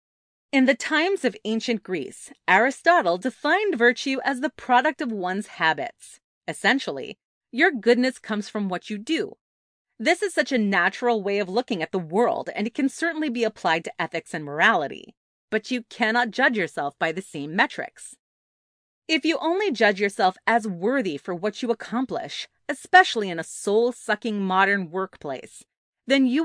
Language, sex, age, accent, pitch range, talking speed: English, female, 30-49, American, 200-275 Hz, 165 wpm